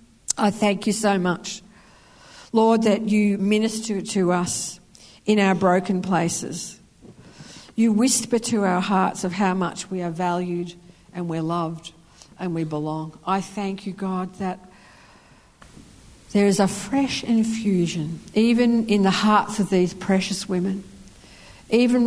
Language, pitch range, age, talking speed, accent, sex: English, 170-205 Hz, 50-69, 140 wpm, Australian, female